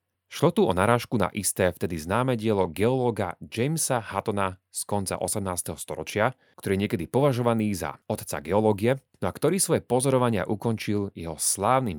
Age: 30-49